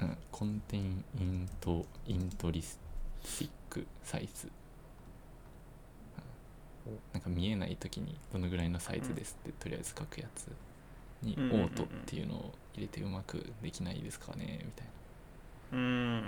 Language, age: Japanese, 20-39